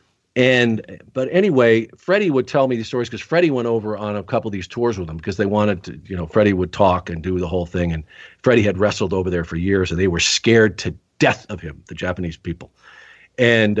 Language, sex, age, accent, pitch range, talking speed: English, male, 50-69, American, 90-115 Hz, 240 wpm